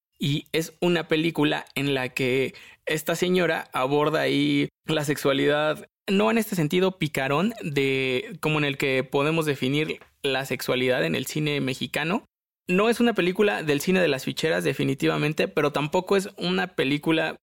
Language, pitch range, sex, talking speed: Spanish, 140-170 Hz, male, 160 wpm